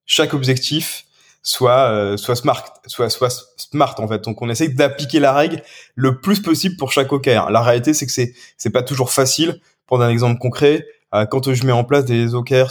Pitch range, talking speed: 120-145 Hz, 210 wpm